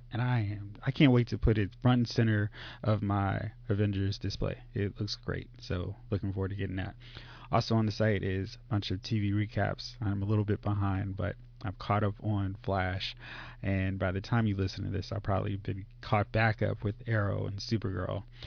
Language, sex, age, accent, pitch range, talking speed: English, male, 20-39, American, 100-120 Hz, 210 wpm